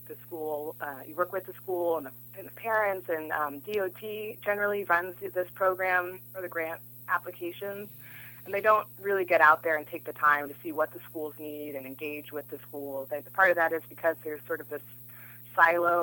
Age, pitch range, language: 20-39, 140-175 Hz, English